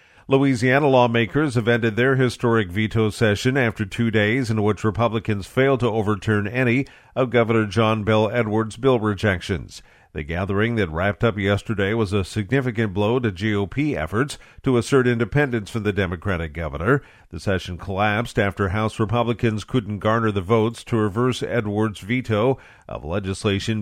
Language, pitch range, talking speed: English, 100-120 Hz, 155 wpm